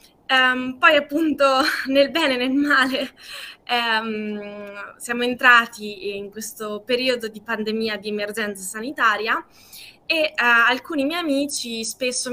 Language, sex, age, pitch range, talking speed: Italian, female, 20-39, 230-275 Hz, 105 wpm